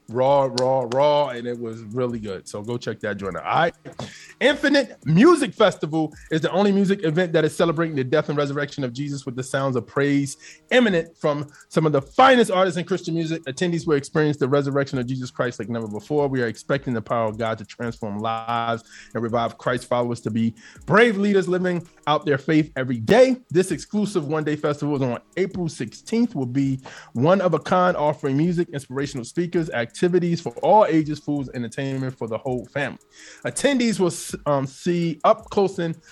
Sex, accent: male, American